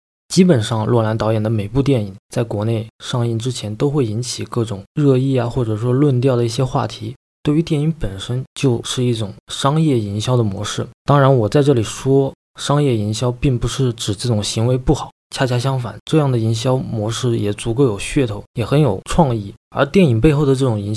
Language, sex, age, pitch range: Chinese, male, 20-39, 110-140 Hz